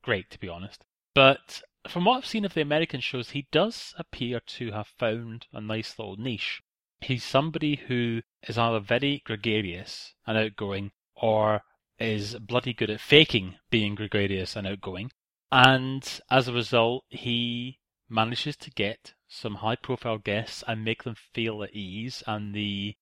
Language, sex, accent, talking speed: English, male, British, 160 wpm